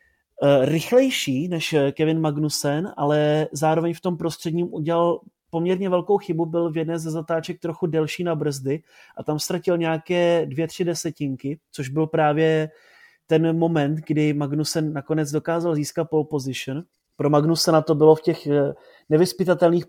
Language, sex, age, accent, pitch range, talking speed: Czech, male, 30-49, native, 145-165 Hz, 145 wpm